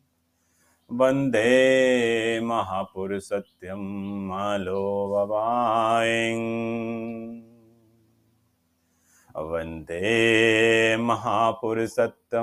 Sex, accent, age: male, native, 40-59